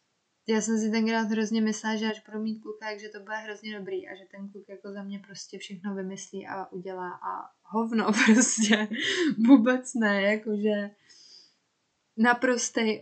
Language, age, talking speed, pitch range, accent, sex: Czech, 20-39, 160 wpm, 185-215 Hz, native, female